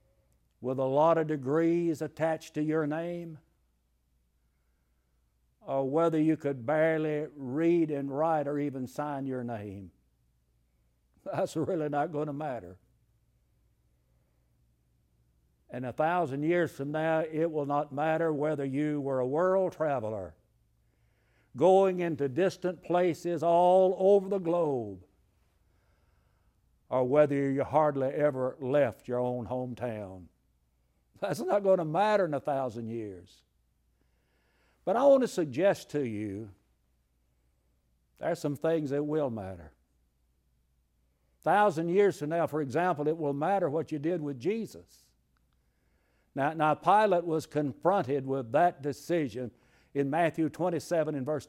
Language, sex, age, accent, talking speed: English, male, 60-79, American, 130 wpm